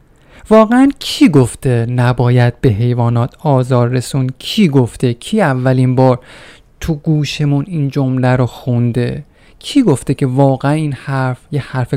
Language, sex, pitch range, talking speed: Persian, male, 130-165 Hz, 135 wpm